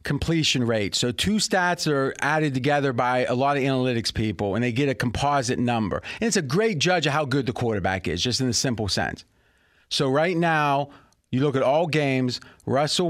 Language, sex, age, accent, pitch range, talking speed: English, male, 40-59, American, 125-175 Hz, 205 wpm